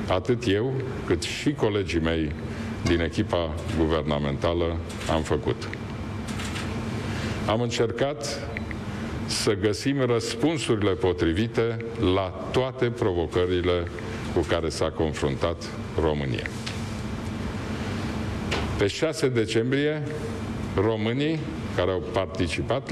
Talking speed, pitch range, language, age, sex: 85 wpm, 95-115 Hz, Romanian, 50-69, male